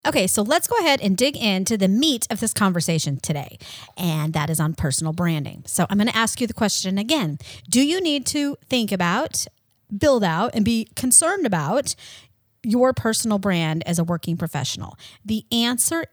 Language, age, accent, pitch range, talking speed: English, 30-49, American, 165-225 Hz, 180 wpm